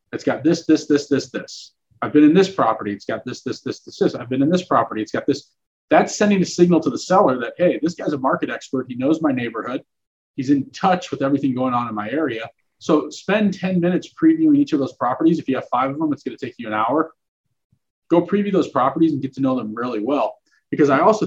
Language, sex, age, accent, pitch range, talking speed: English, male, 30-49, American, 125-155 Hz, 255 wpm